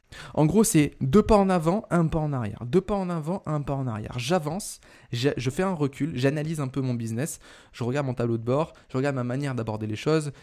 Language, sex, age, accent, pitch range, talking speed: French, male, 20-39, French, 115-145 Hz, 240 wpm